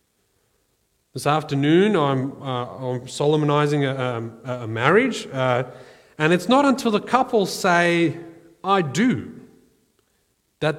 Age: 30-49